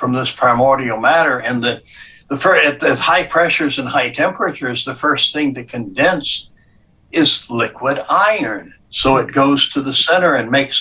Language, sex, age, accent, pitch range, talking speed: English, male, 60-79, American, 125-145 Hz, 170 wpm